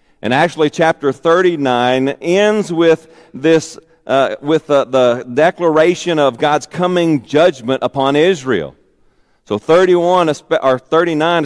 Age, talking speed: 40-59, 115 wpm